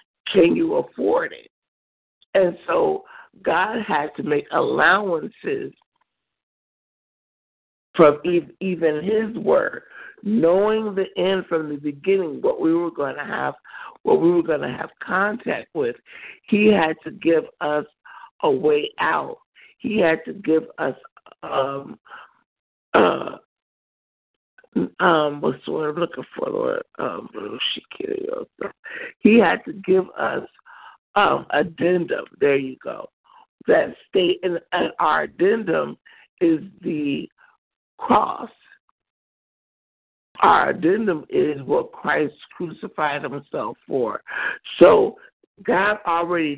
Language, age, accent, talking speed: English, 60-79, American, 115 wpm